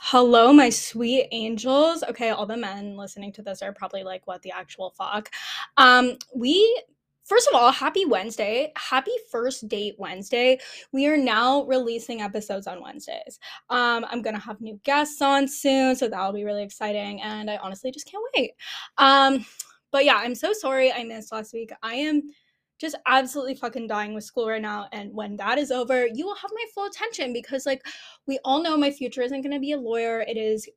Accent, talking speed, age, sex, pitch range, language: American, 195 wpm, 10-29, female, 215-275 Hz, English